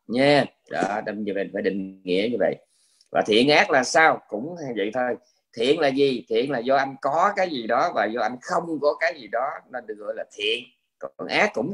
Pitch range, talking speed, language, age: 115-170 Hz, 230 wpm, Vietnamese, 20-39